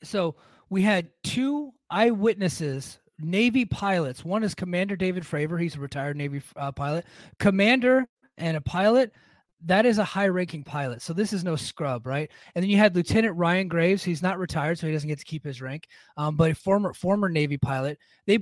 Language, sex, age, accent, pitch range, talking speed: English, male, 30-49, American, 150-205 Hz, 190 wpm